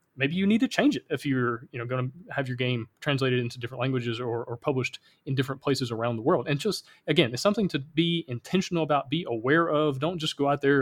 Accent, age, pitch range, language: American, 30-49, 130-165 Hz, English